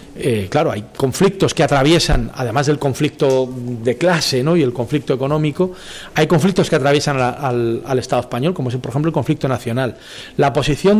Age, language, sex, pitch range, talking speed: 40-59, Spanish, male, 120-165 Hz, 190 wpm